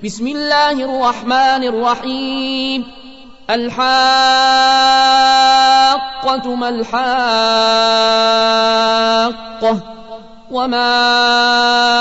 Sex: male